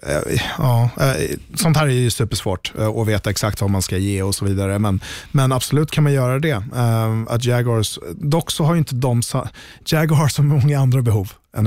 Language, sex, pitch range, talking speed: Swedish, male, 100-125 Hz, 180 wpm